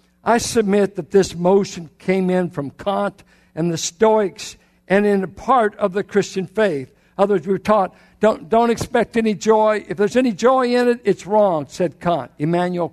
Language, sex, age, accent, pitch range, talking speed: English, male, 60-79, American, 175-220 Hz, 185 wpm